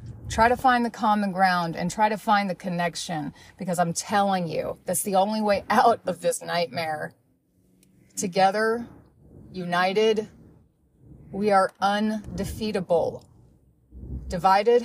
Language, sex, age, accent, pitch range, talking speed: English, female, 30-49, American, 175-225 Hz, 120 wpm